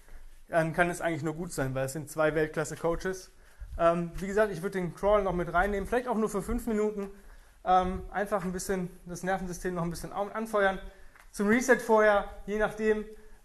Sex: male